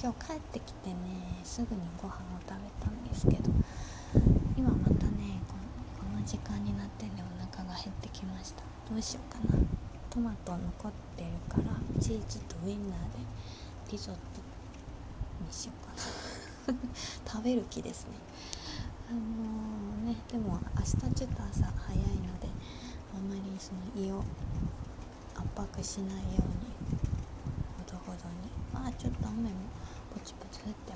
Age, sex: 20-39, female